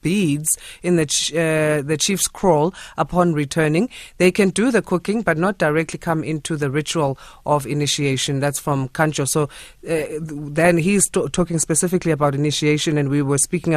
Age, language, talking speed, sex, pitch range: 30-49, English, 190 wpm, female, 155-190 Hz